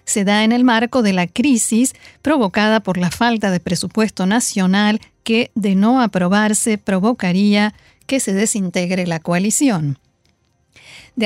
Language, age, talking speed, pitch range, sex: Spanish, 40-59, 140 wpm, 195-245 Hz, female